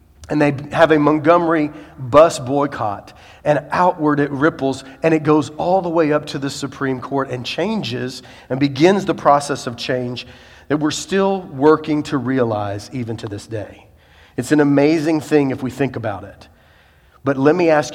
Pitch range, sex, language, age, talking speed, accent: 130-155 Hz, male, English, 40-59, 175 wpm, American